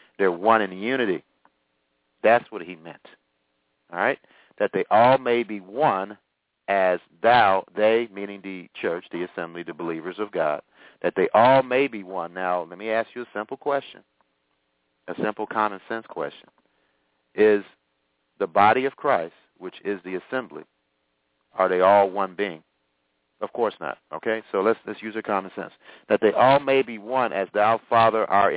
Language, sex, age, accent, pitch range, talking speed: English, male, 50-69, American, 85-115 Hz, 170 wpm